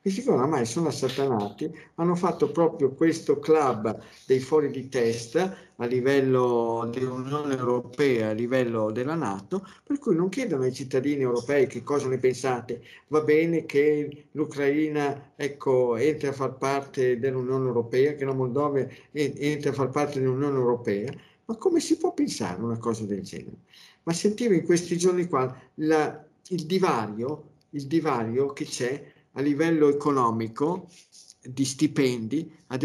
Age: 50-69